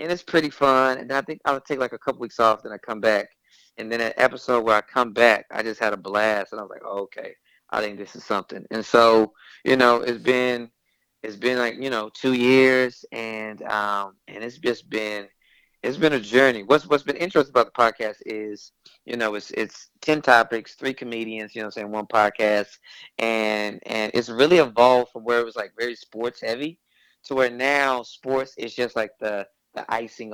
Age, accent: 20-39, American